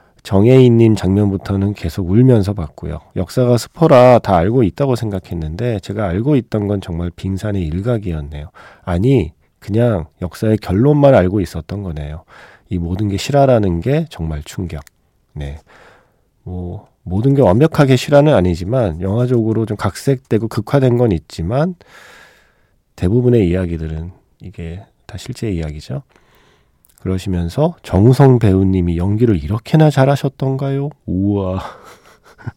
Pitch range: 90-125 Hz